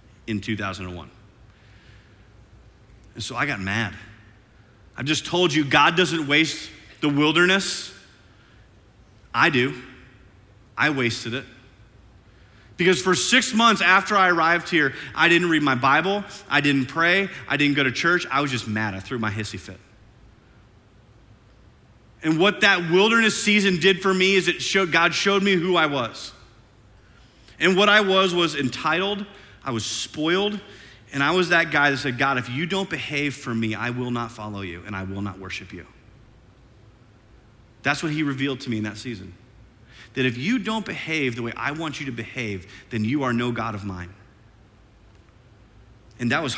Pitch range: 105-150 Hz